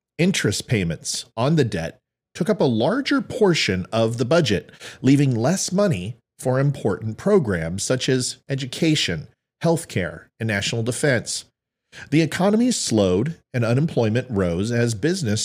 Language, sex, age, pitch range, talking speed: English, male, 40-59, 105-150 Hz, 130 wpm